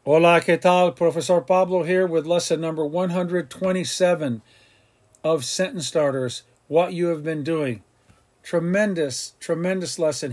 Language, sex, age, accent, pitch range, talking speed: English, male, 50-69, American, 130-165 Hz, 120 wpm